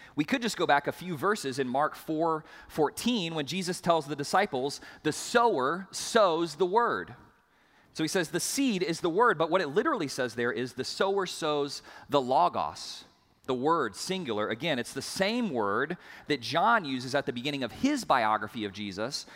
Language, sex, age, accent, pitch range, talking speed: English, male, 30-49, American, 135-200 Hz, 190 wpm